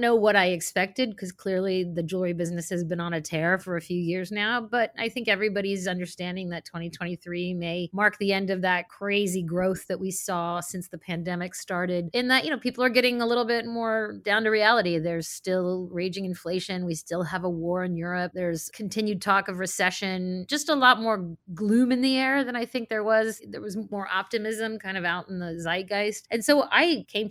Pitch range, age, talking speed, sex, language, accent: 175-210 Hz, 30-49, 215 wpm, female, English, American